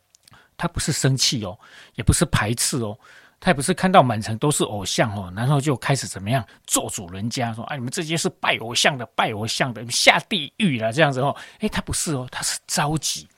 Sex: male